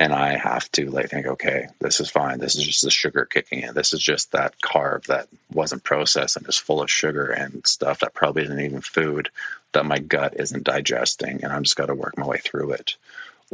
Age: 30-49